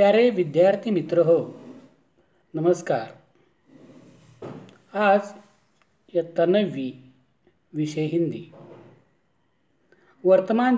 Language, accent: Marathi, native